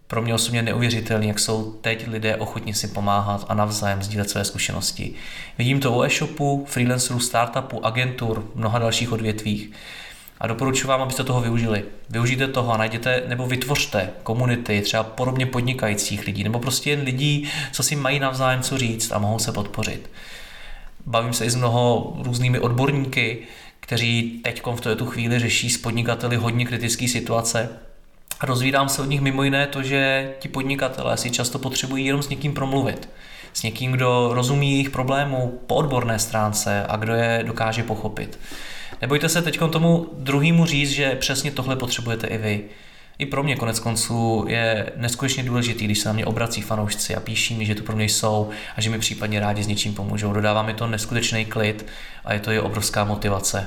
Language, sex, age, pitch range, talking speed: Czech, male, 30-49, 110-130 Hz, 180 wpm